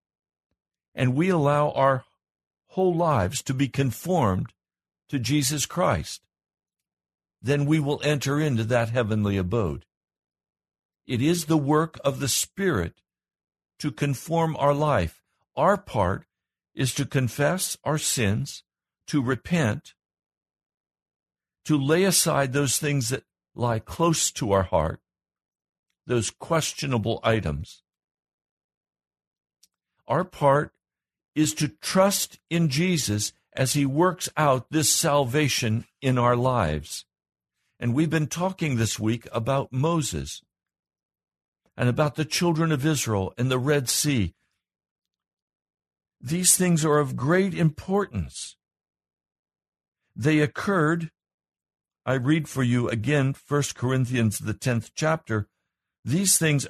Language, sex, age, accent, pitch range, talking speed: English, male, 60-79, American, 105-155 Hz, 115 wpm